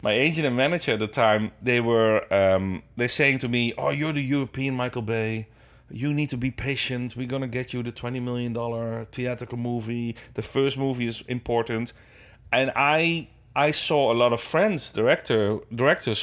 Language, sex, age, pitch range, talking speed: English, male, 30-49, 110-135 Hz, 185 wpm